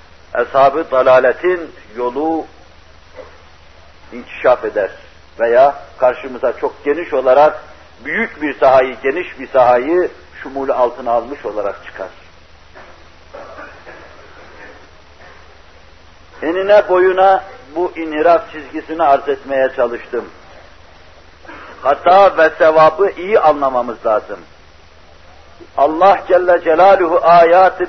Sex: male